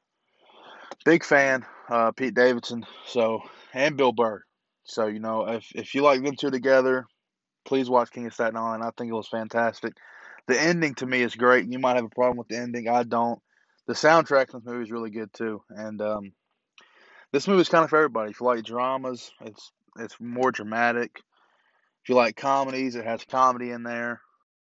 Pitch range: 115-130 Hz